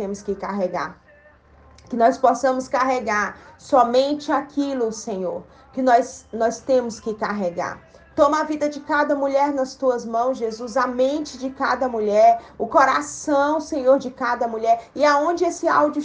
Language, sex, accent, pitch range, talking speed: Portuguese, female, Brazilian, 240-295 Hz, 160 wpm